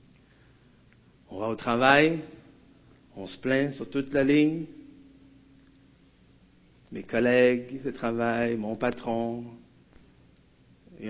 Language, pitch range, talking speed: French, 115-185 Hz, 95 wpm